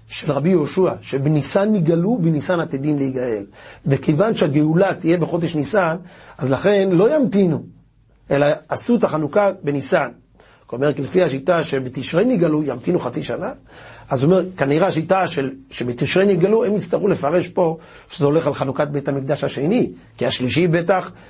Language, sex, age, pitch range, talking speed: Hebrew, male, 40-59, 135-180 Hz, 145 wpm